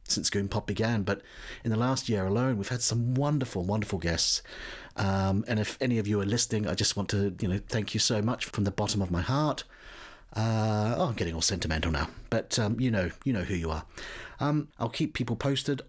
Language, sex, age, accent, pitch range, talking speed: English, male, 40-59, British, 100-125 Hz, 225 wpm